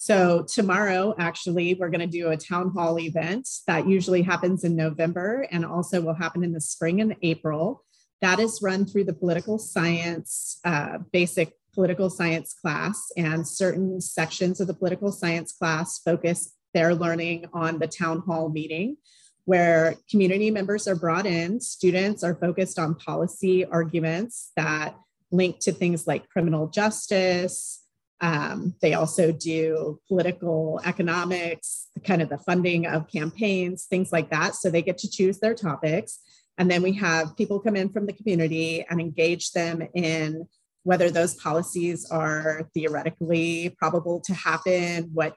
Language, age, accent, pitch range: English, 30-49, American, 165-190 Hz